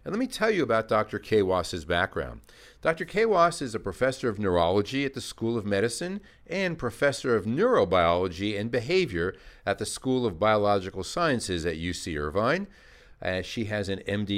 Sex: male